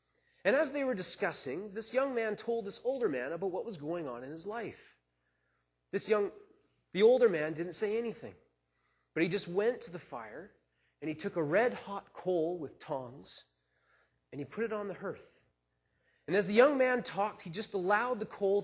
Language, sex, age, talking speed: English, male, 30-49, 195 wpm